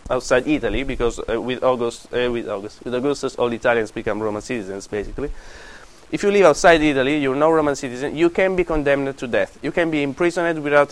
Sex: male